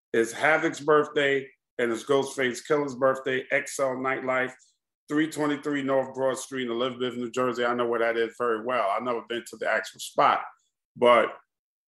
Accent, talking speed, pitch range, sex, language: American, 165 wpm, 120-145 Hz, male, English